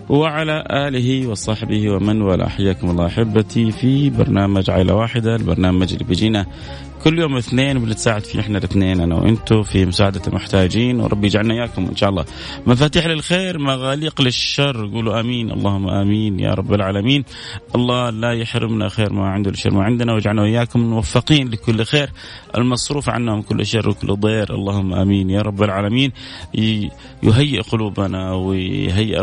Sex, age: male, 30-49